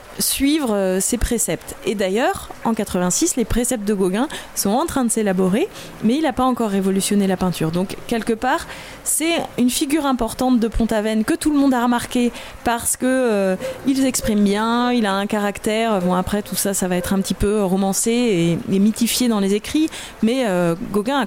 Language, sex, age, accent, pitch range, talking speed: French, female, 20-39, French, 195-255 Hz, 195 wpm